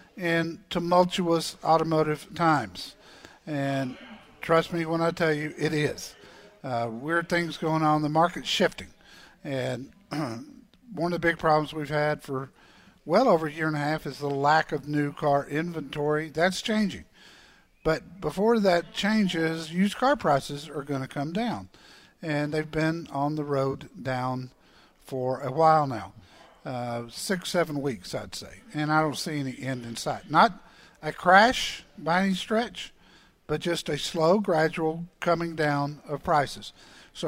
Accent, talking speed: American, 160 wpm